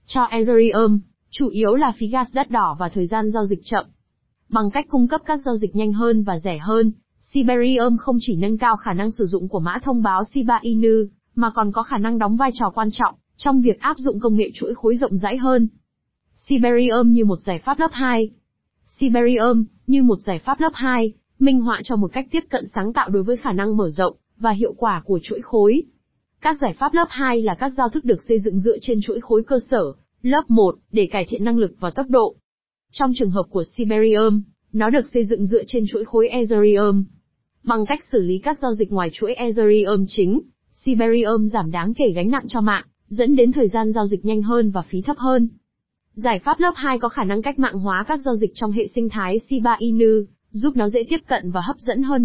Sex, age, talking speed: female, 20-39, 230 wpm